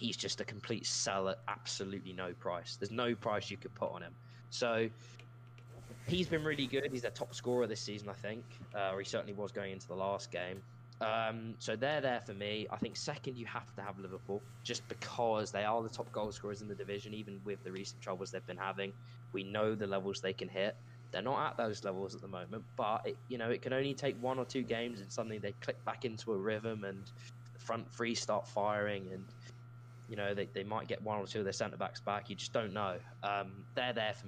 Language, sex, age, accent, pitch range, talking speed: English, male, 20-39, British, 100-120 Hz, 235 wpm